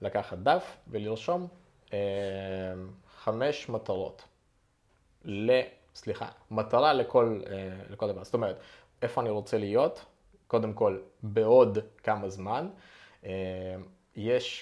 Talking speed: 105 wpm